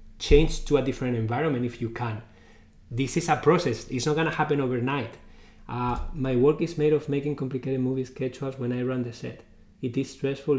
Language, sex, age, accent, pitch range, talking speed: English, male, 20-39, Spanish, 120-145 Hz, 205 wpm